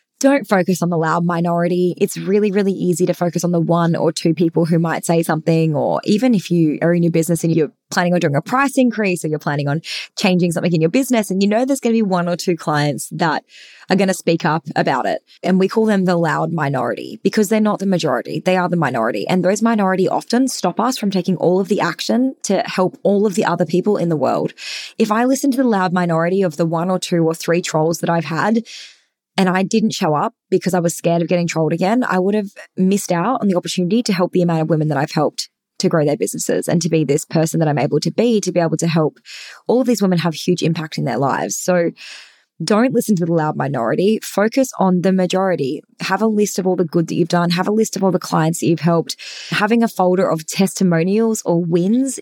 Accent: Australian